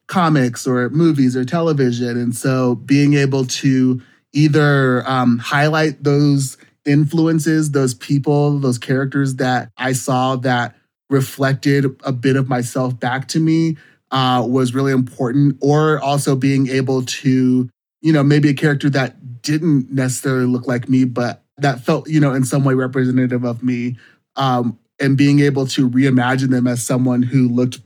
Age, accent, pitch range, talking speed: 30-49, American, 125-145 Hz, 155 wpm